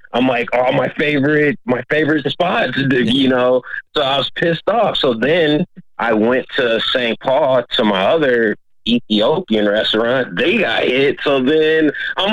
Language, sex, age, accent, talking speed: English, male, 30-49, American, 160 wpm